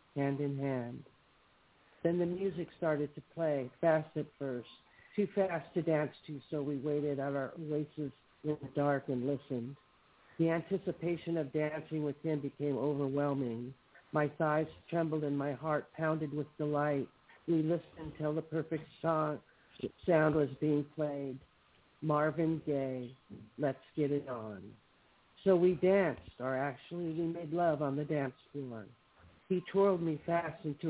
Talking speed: 150 wpm